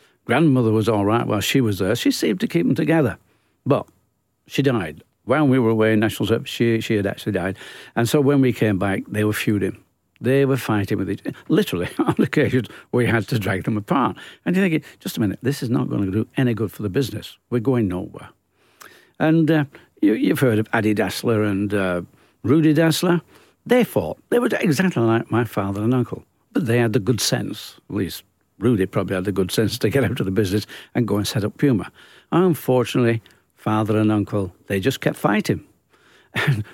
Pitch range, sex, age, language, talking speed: 105-140 Hz, male, 60-79, English, 215 wpm